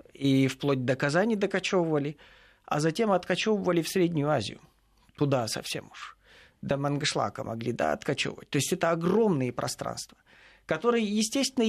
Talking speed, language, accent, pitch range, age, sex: 135 wpm, Russian, native, 130-170 Hz, 40-59, male